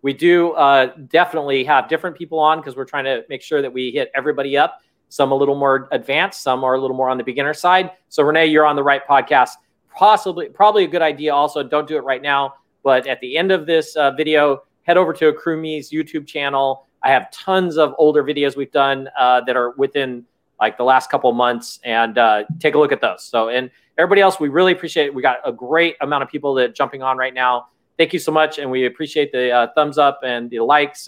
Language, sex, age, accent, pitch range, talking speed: English, male, 30-49, American, 130-160 Hz, 240 wpm